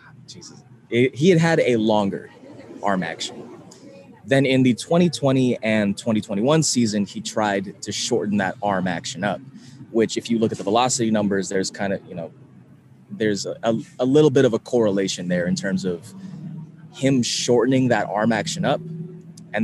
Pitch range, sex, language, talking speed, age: 95-130 Hz, male, English, 165 wpm, 20-39